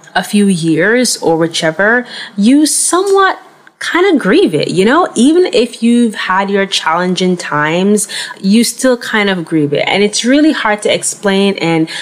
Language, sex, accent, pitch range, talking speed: English, female, American, 165-225 Hz, 165 wpm